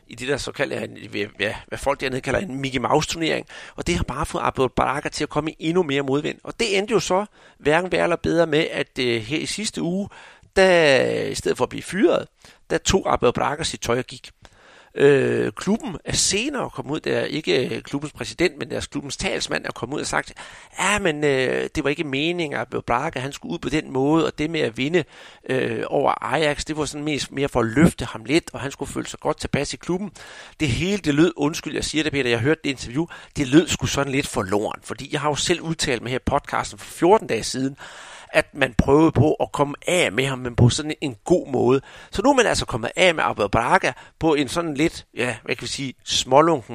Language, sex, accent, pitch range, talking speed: Danish, male, native, 130-170 Hz, 230 wpm